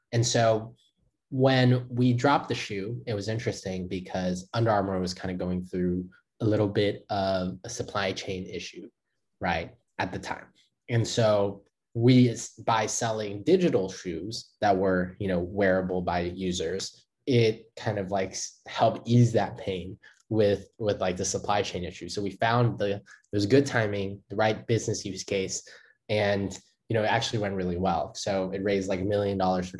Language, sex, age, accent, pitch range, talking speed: English, male, 20-39, American, 95-110 Hz, 175 wpm